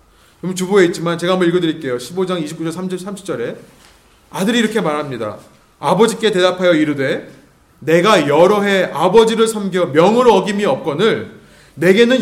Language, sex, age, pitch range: Korean, male, 30-49, 160-230 Hz